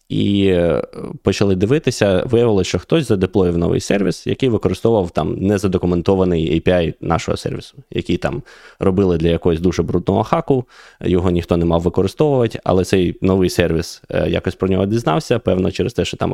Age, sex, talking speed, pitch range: 20-39, male, 155 wpm, 85-105 Hz